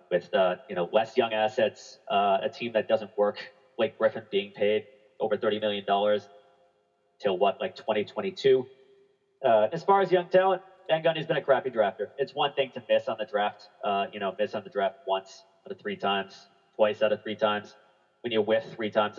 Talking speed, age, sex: 205 wpm, 30-49, male